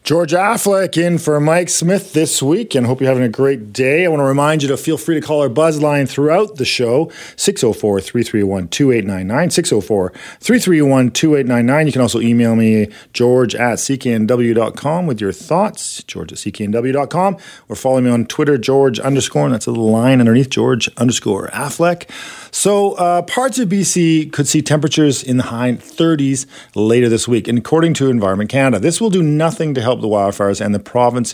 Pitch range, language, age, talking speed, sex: 110-155 Hz, English, 40-59, 190 wpm, male